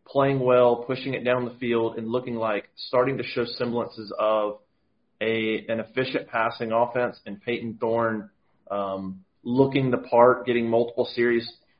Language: English